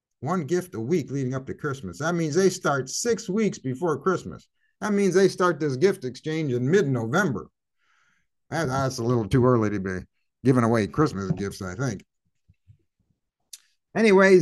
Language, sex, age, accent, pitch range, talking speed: English, male, 50-69, American, 130-185 Hz, 160 wpm